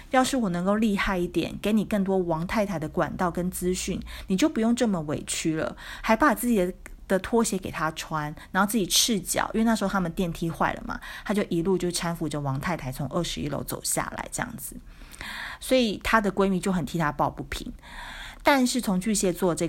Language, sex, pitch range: Chinese, female, 160-215 Hz